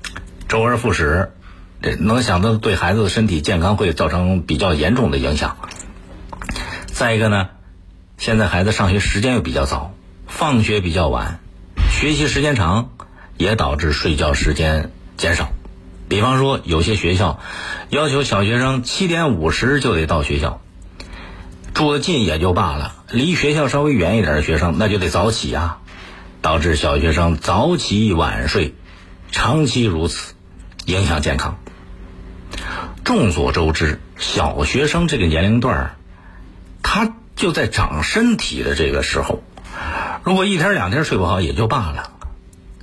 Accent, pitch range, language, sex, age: native, 85-115 Hz, Chinese, male, 50-69